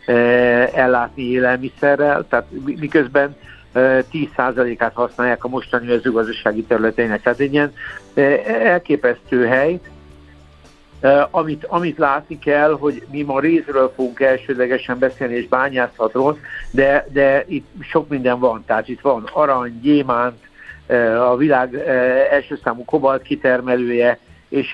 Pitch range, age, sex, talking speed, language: 120-145 Hz, 60-79, male, 115 wpm, Hungarian